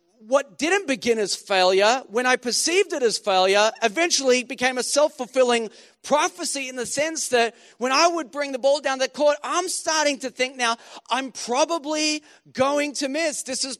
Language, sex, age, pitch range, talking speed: English, male, 40-59, 230-300 Hz, 180 wpm